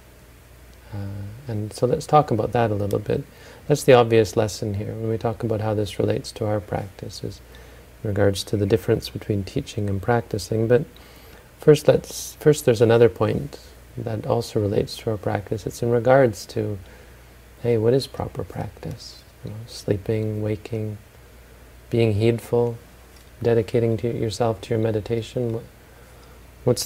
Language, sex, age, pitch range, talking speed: English, male, 40-59, 100-120 Hz, 155 wpm